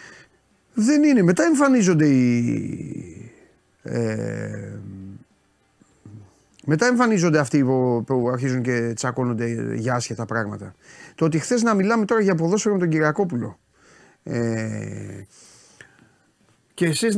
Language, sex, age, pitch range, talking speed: Greek, male, 30-49, 115-165 Hz, 100 wpm